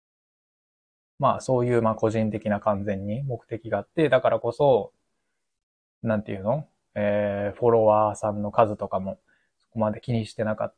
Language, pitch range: Japanese, 105-135 Hz